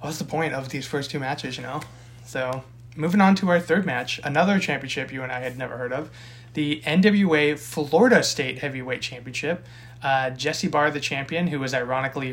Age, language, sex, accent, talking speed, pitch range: 20-39, English, male, American, 195 wpm, 130-155 Hz